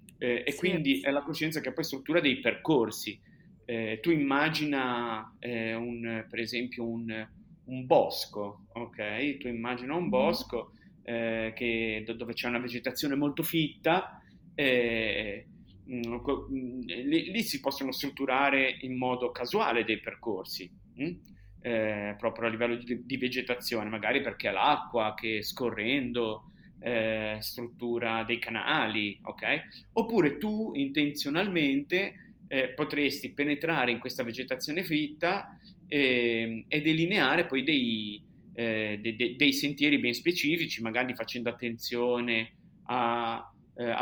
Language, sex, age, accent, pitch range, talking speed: Italian, male, 30-49, native, 115-145 Hz, 125 wpm